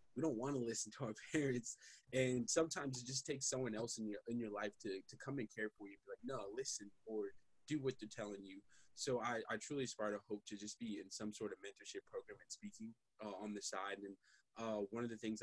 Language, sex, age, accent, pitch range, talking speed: English, male, 20-39, American, 100-120 Hz, 255 wpm